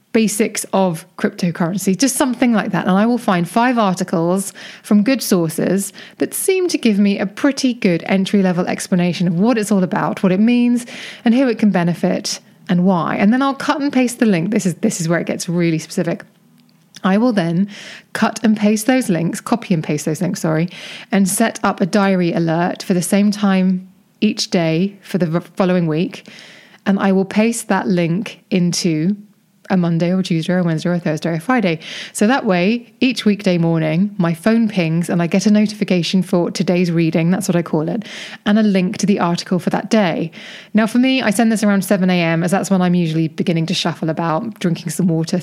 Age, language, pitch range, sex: 20-39, English, 175-215 Hz, female